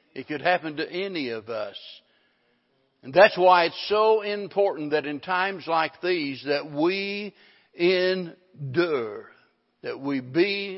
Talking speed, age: 135 wpm, 60-79